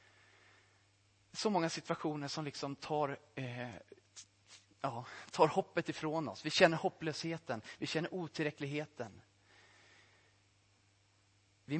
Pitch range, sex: 100-150 Hz, male